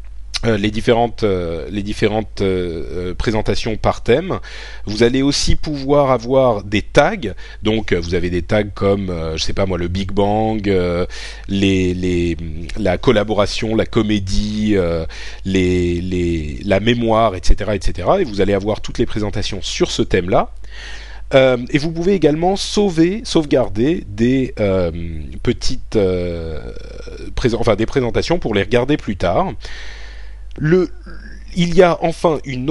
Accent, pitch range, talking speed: French, 95-125 Hz, 150 wpm